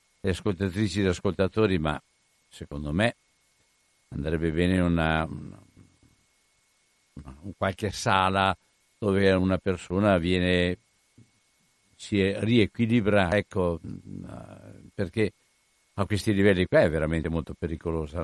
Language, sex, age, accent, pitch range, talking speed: Italian, male, 60-79, native, 95-115 Hz, 100 wpm